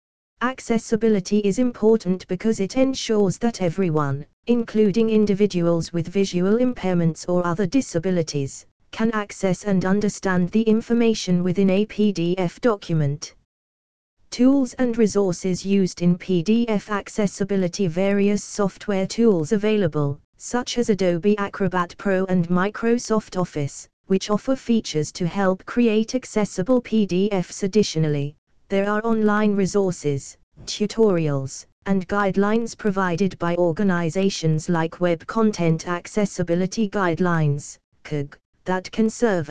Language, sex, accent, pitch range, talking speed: English, female, British, 175-215 Hz, 110 wpm